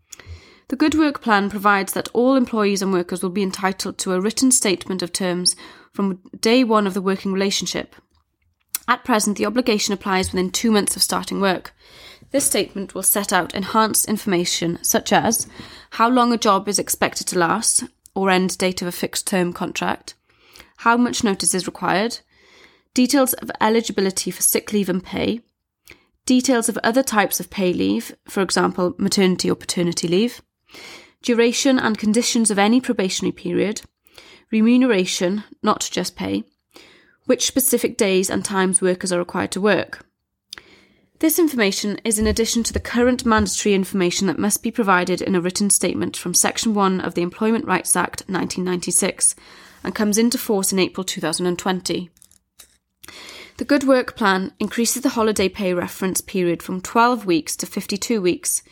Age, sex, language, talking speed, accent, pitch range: 20-39, female, English, 160 wpm, British, 185-230 Hz